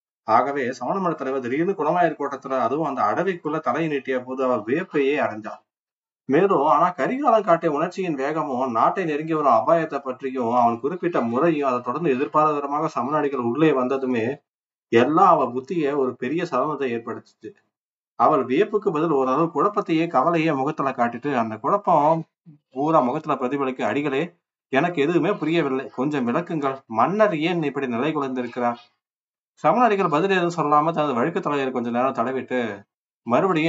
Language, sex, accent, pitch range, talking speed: Tamil, male, native, 125-160 Hz, 135 wpm